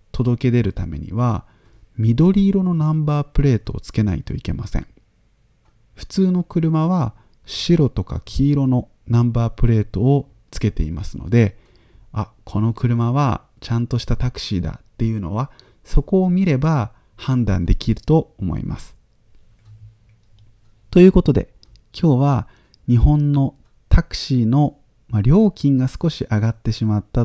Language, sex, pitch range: Japanese, male, 105-130 Hz